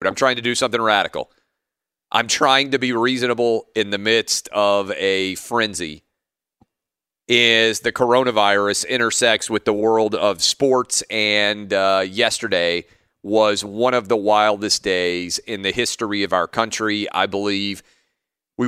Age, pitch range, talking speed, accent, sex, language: 40-59, 100-120 Hz, 145 wpm, American, male, English